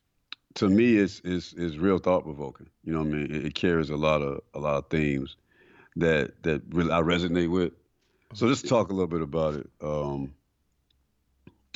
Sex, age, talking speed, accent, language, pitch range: male, 50-69, 185 wpm, American, English, 75-85 Hz